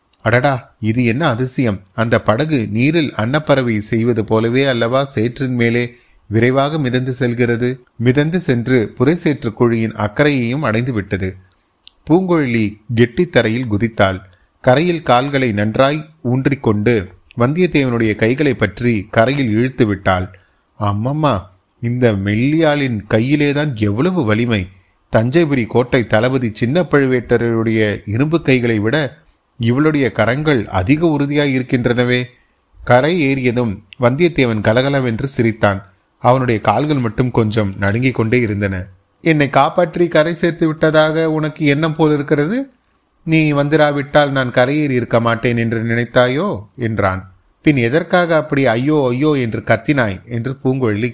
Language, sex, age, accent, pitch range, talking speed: Tamil, male, 30-49, native, 110-145 Hz, 115 wpm